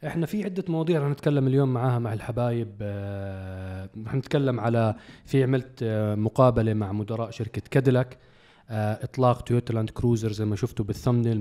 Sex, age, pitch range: male, 20-39, 115-155 Hz